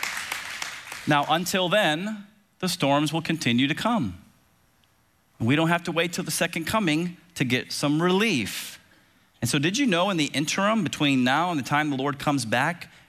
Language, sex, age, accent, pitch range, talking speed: English, male, 30-49, American, 125-165 Hz, 180 wpm